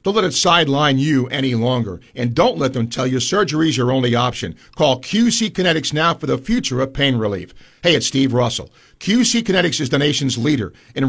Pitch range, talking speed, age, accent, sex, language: 125-170 Hz, 210 wpm, 50-69, American, male, English